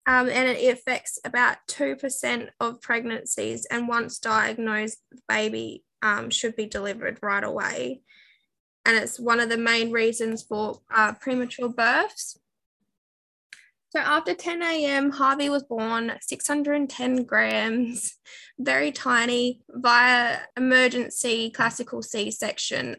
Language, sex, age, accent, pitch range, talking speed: English, female, 10-29, Australian, 225-260 Hz, 115 wpm